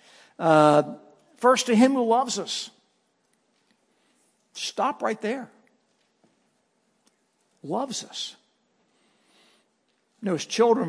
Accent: American